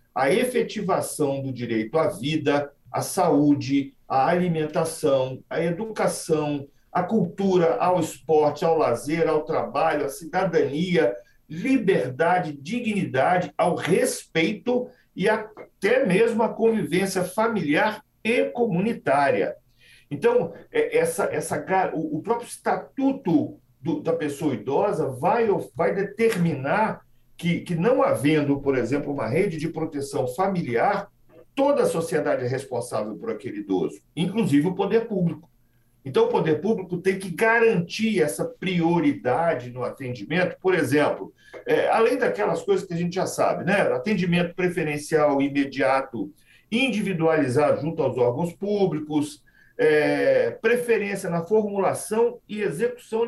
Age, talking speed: 50-69, 115 wpm